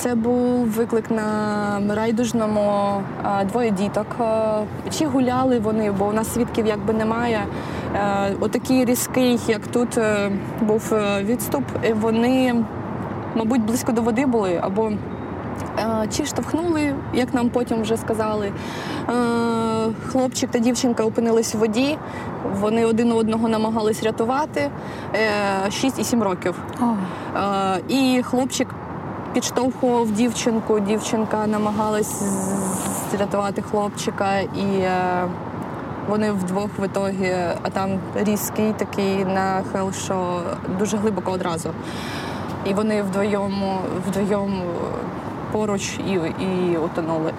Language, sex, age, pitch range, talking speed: Ukrainian, female, 20-39, 195-230 Hz, 105 wpm